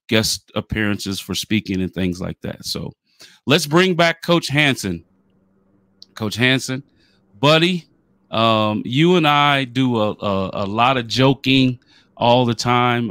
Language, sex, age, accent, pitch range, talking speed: English, male, 30-49, American, 105-130 Hz, 140 wpm